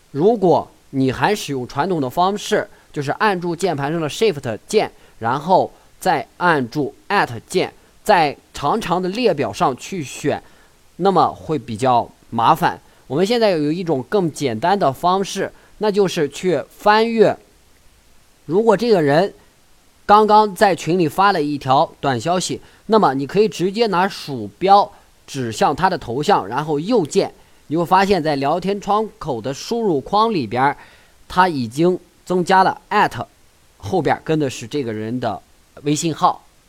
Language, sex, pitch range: Chinese, male, 130-190 Hz